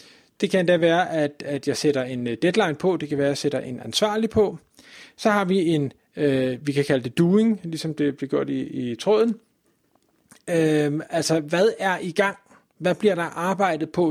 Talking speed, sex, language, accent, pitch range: 205 wpm, male, Danish, native, 160-205 Hz